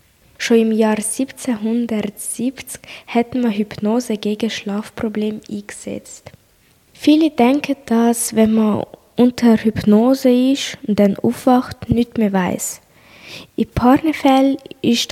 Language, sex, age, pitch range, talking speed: German, female, 10-29, 215-250 Hz, 105 wpm